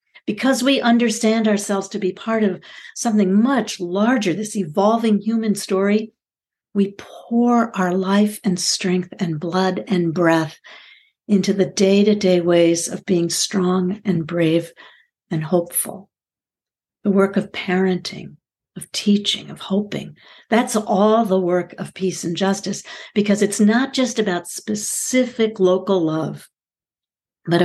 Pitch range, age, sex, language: 175-210 Hz, 50-69, female, English